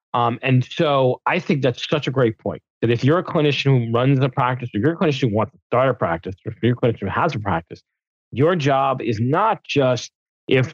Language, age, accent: English, 30-49, American